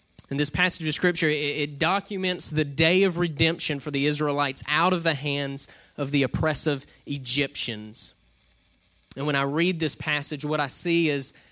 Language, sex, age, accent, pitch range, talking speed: English, male, 20-39, American, 140-170 Hz, 170 wpm